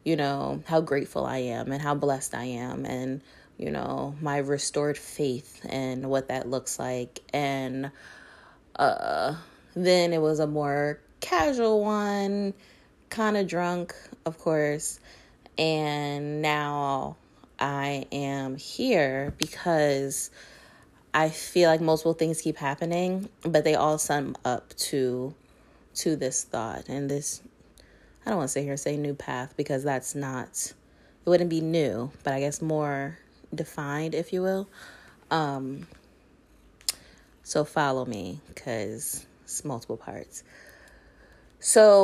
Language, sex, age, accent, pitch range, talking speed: English, female, 20-39, American, 135-160 Hz, 135 wpm